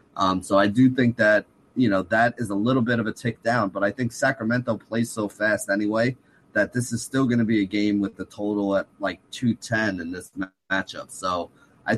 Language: English